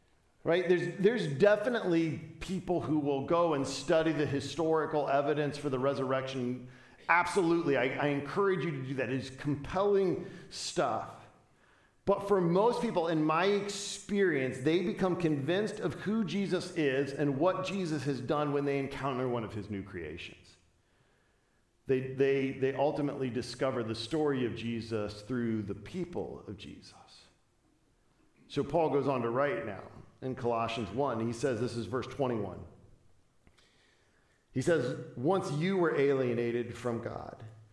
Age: 50-69